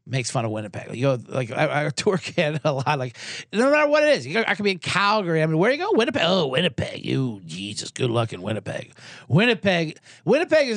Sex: male